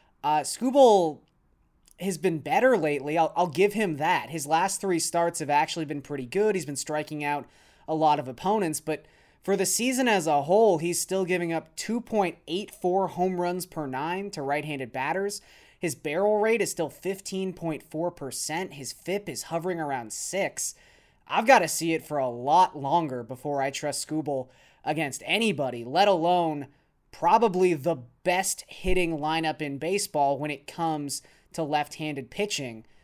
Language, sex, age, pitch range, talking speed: English, male, 20-39, 145-185 Hz, 165 wpm